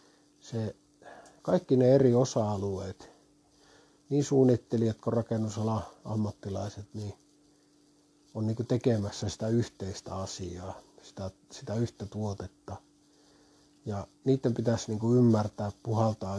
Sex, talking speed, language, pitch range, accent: male, 100 wpm, Finnish, 105-135 Hz, native